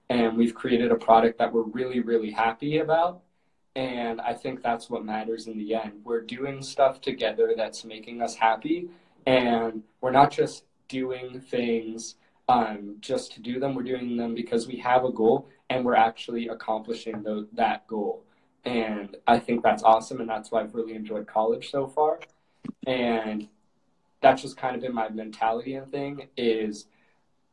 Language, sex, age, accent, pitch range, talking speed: English, male, 20-39, American, 115-130 Hz, 170 wpm